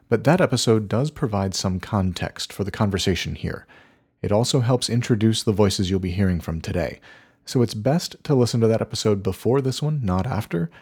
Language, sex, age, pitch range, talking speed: English, male, 40-59, 95-125 Hz, 195 wpm